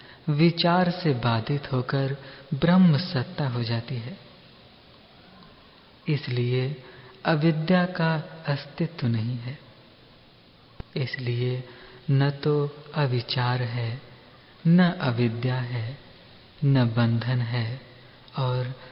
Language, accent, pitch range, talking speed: Hindi, native, 125-150 Hz, 85 wpm